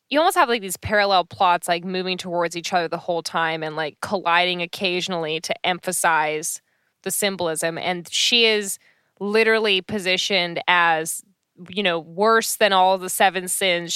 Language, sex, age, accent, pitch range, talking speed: English, female, 10-29, American, 175-205 Hz, 160 wpm